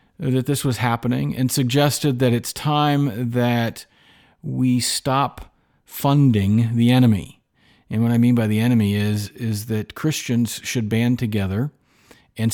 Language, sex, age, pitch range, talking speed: English, male, 40-59, 105-135 Hz, 145 wpm